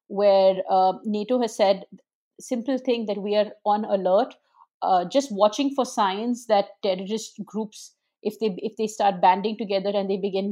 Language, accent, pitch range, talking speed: English, Indian, 195-225 Hz, 170 wpm